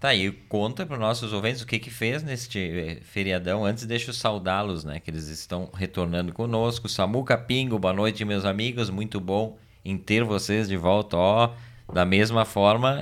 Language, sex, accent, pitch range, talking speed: Portuguese, male, Brazilian, 90-115 Hz, 185 wpm